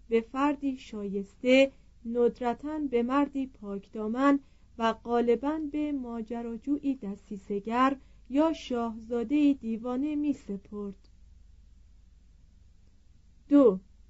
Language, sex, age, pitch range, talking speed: Persian, female, 40-59, 210-280 Hz, 70 wpm